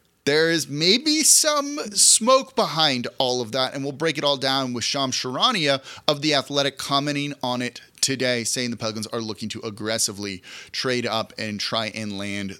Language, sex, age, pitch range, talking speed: English, male, 30-49, 125-165 Hz, 180 wpm